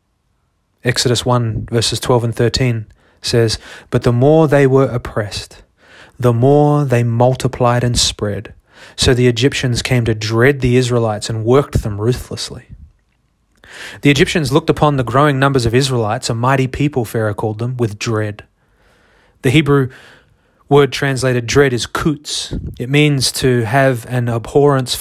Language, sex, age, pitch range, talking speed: English, male, 20-39, 115-140 Hz, 145 wpm